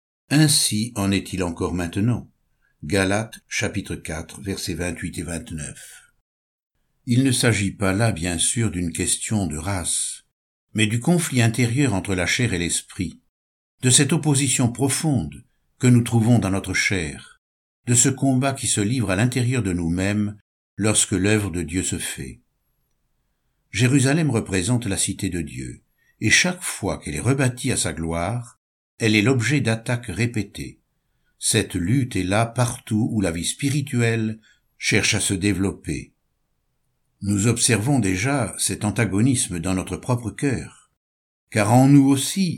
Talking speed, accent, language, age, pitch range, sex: 145 wpm, French, French, 60-79, 90-125 Hz, male